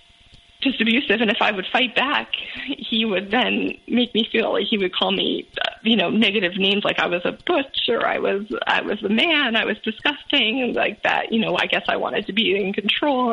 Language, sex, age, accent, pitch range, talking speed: English, female, 20-39, American, 200-240 Hz, 225 wpm